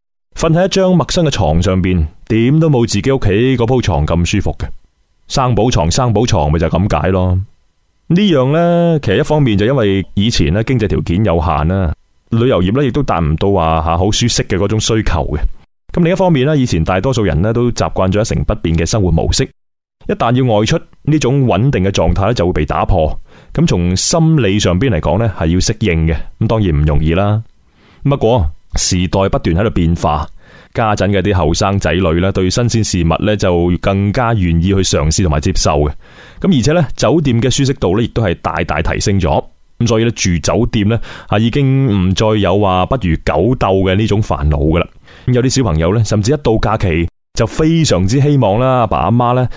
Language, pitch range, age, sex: Chinese, 85-120 Hz, 20-39, male